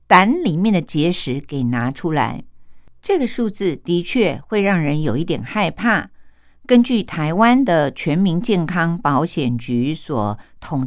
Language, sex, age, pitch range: Japanese, female, 50-69, 145-240 Hz